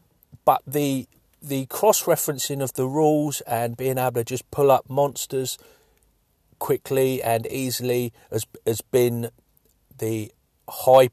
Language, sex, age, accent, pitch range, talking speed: English, male, 40-59, British, 115-150 Hz, 130 wpm